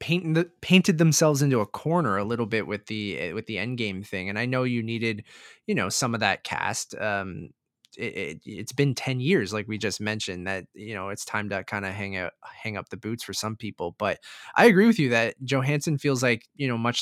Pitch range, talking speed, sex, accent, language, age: 105-130 Hz, 235 wpm, male, American, English, 20-39